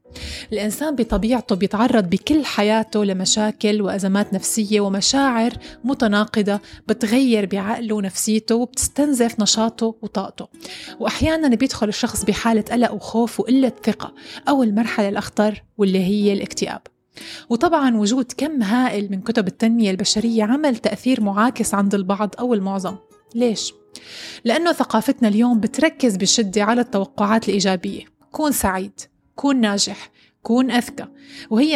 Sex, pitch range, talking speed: female, 205-250 Hz, 115 wpm